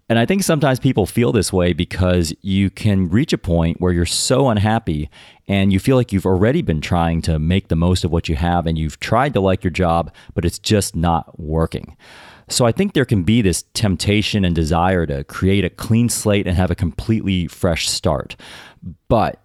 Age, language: 30-49, English